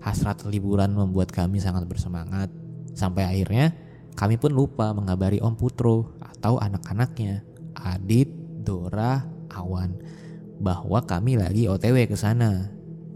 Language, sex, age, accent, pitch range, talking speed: Indonesian, male, 20-39, native, 95-155 Hz, 115 wpm